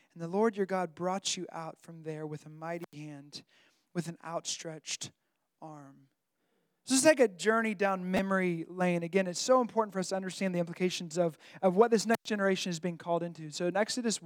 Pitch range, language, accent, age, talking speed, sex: 170-220 Hz, English, American, 20-39, 205 wpm, male